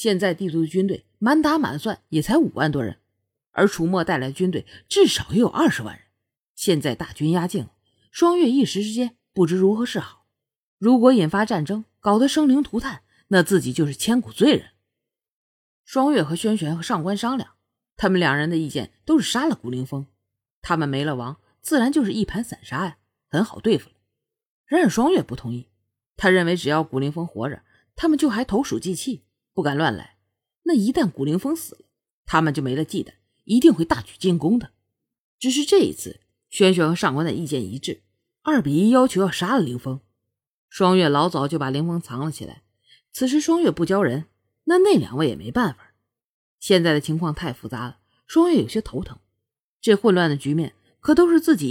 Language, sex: Chinese, female